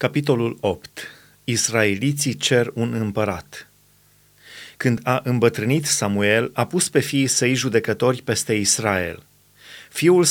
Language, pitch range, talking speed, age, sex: Romanian, 115-145 Hz, 110 wpm, 30-49, male